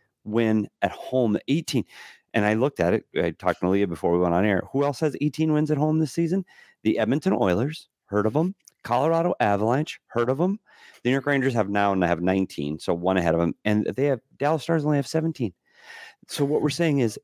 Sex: male